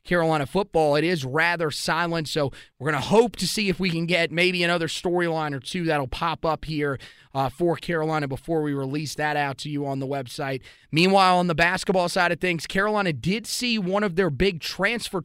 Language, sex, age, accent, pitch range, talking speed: English, male, 30-49, American, 155-180 Hz, 215 wpm